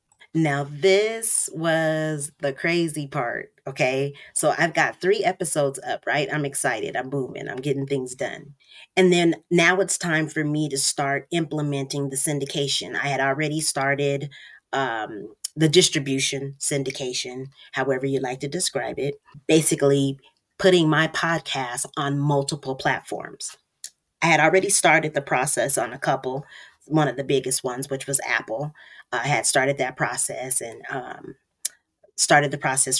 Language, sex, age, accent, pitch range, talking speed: English, female, 30-49, American, 135-170 Hz, 150 wpm